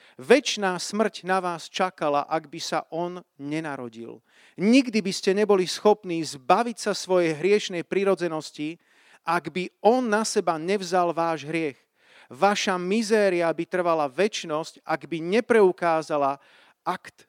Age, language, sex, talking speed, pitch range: 40-59, Slovak, male, 130 wpm, 155-195 Hz